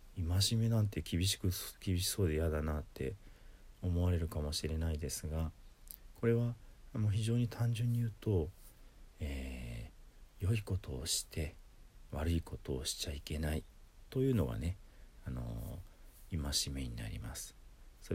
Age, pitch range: 40-59, 75-95 Hz